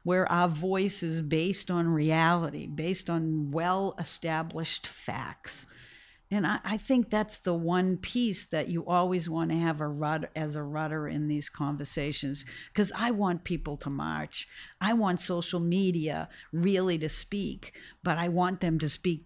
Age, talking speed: 60-79, 160 wpm